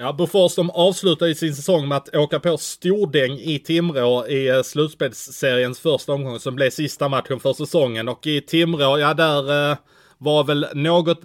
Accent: Norwegian